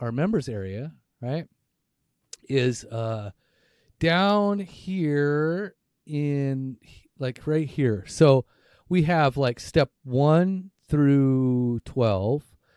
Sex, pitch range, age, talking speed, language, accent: male, 115-140 Hz, 30-49, 95 wpm, English, American